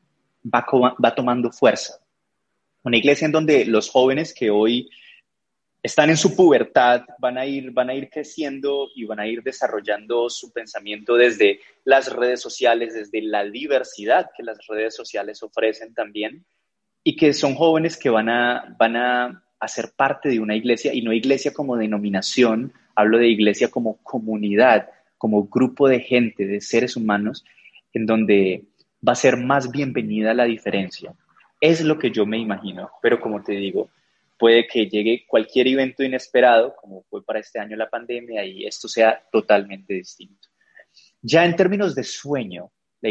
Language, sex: Spanish, male